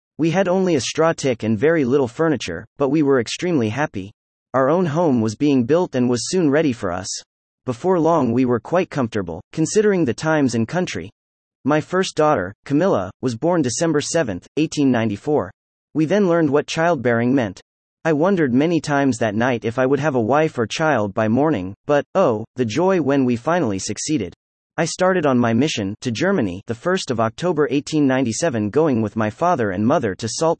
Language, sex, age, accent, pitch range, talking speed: English, male, 30-49, American, 115-160 Hz, 190 wpm